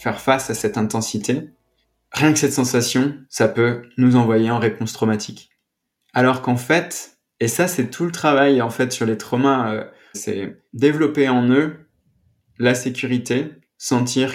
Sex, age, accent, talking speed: male, 20-39, French, 155 wpm